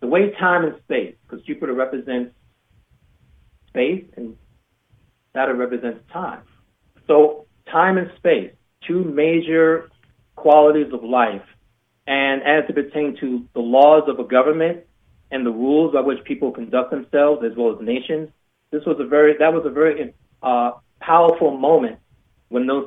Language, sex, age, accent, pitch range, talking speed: English, male, 30-49, American, 125-165 Hz, 150 wpm